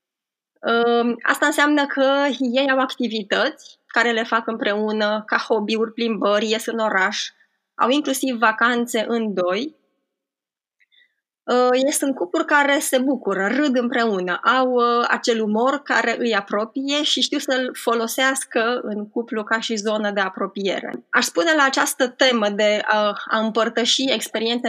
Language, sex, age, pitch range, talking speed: Romanian, female, 20-39, 215-260 Hz, 135 wpm